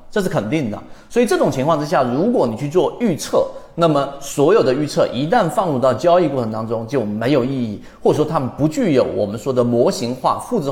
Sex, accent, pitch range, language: male, native, 125-175 Hz, Chinese